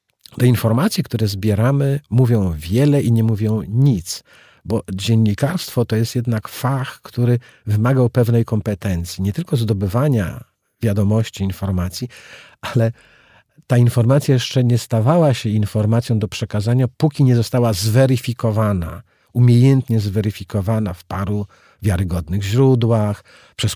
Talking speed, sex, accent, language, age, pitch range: 115 wpm, male, native, Polish, 40-59, 105-130 Hz